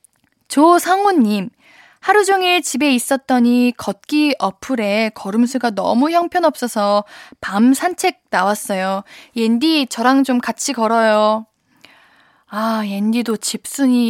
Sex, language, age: female, Korean, 20-39